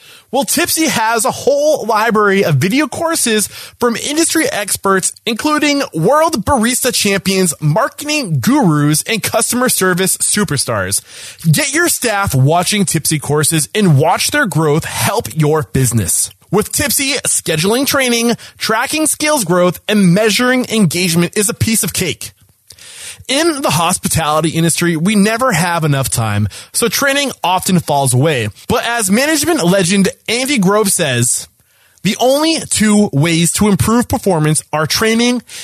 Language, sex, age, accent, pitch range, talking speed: English, male, 20-39, American, 150-240 Hz, 135 wpm